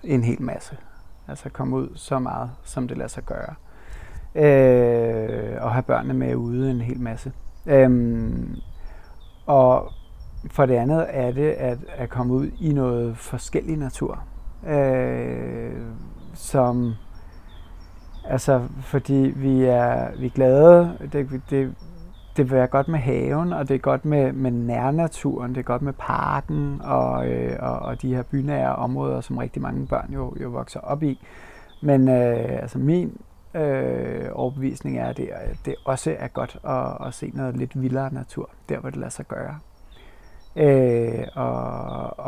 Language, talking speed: Danish, 160 wpm